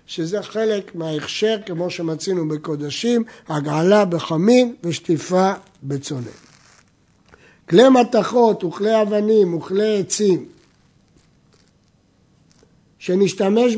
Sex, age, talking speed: male, 60-79, 75 wpm